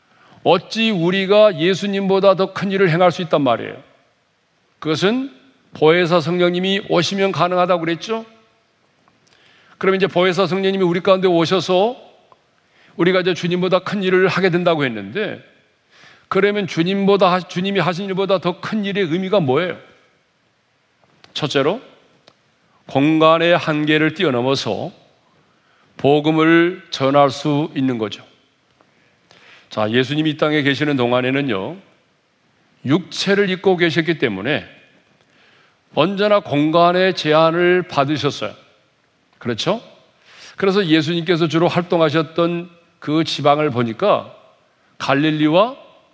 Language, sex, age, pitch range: Korean, male, 40-59, 155-190 Hz